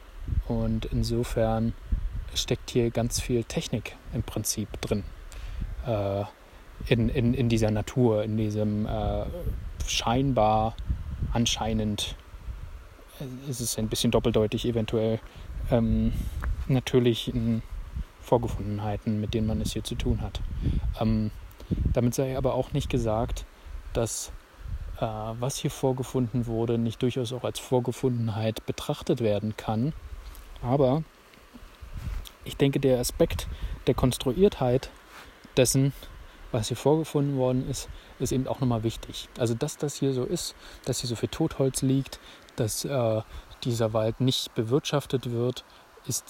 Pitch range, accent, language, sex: 105-130 Hz, German, German, male